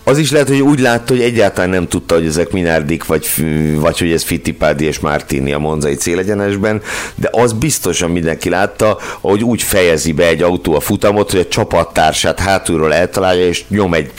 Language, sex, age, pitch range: Hungarian, male, 60-79, 80-100 Hz